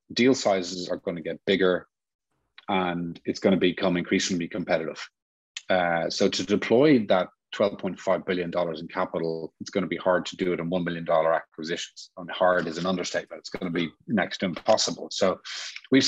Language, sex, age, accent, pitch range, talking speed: English, male, 30-49, Irish, 85-95 Hz, 190 wpm